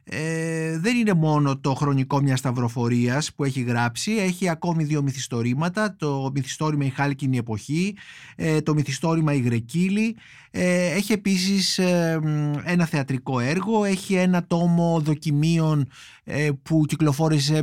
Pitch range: 130-160 Hz